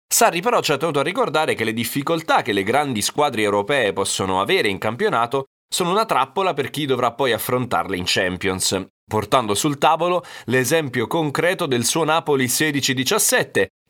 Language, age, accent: Italian, 30-49, native